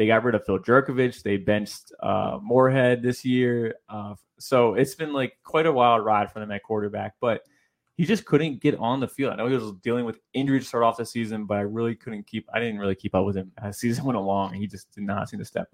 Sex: male